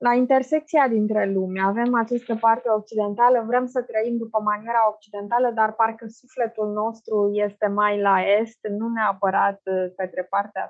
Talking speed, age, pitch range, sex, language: 145 wpm, 20-39, 200-245 Hz, female, Romanian